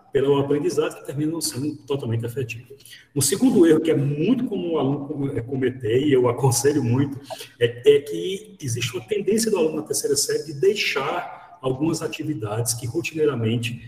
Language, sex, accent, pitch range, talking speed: Portuguese, male, Brazilian, 115-150 Hz, 170 wpm